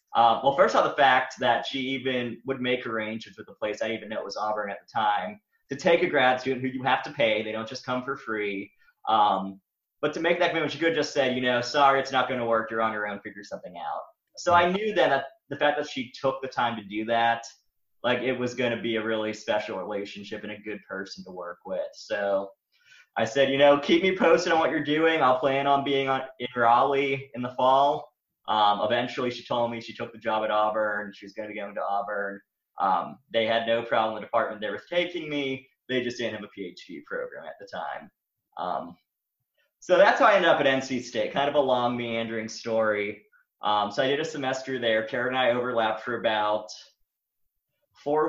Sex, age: male, 20-39